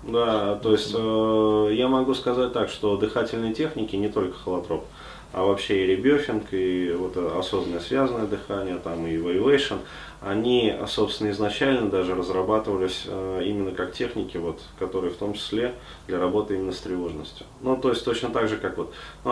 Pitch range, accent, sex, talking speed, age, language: 90-110 Hz, native, male, 170 wpm, 20-39, Russian